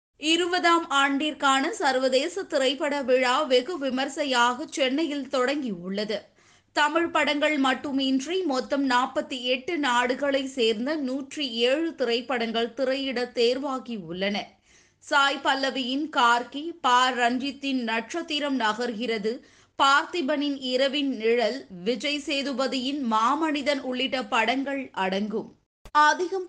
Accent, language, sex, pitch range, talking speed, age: native, Tamil, female, 230-285 Hz, 90 wpm, 20-39